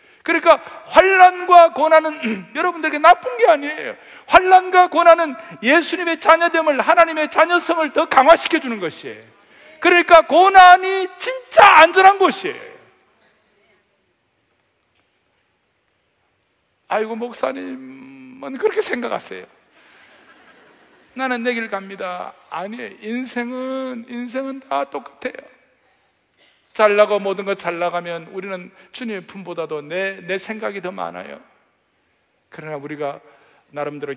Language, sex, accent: Korean, male, native